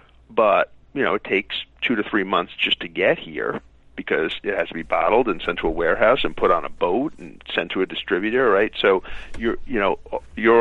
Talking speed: 225 wpm